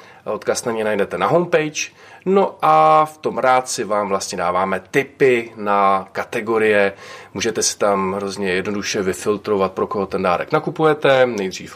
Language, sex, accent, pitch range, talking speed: Czech, male, native, 95-135 Hz, 155 wpm